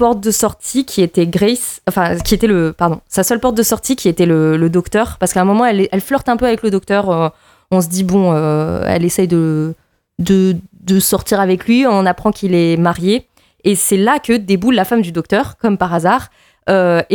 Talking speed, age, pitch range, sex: 230 wpm, 20-39, 175-225 Hz, female